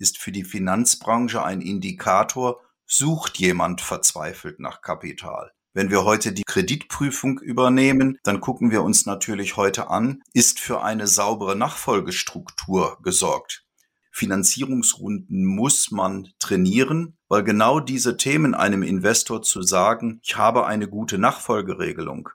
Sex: male